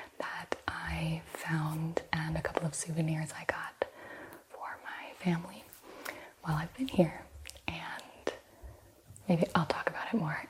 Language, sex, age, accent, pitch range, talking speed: English, female, 20-39, American, 155-180 Hz, 135 wpm